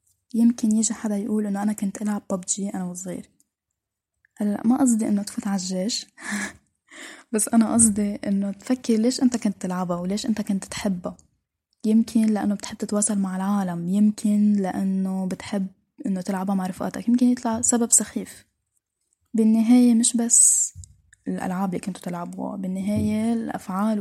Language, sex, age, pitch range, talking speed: Arabic, female, 10-29, 195-235 Hz, 140 wpm